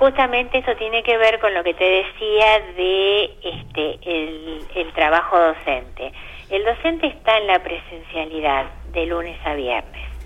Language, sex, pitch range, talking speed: Spanish, female, 165-220 Hz, 150 wpm